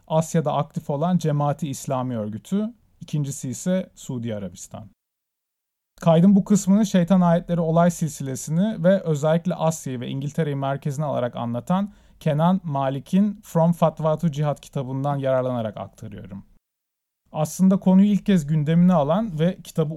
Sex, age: male, 40-59